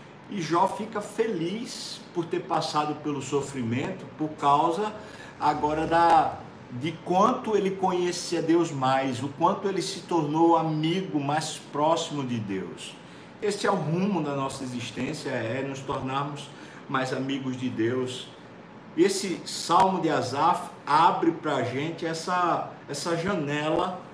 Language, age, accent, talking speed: Portuguese, 60-79, Brazilian, 130 wpm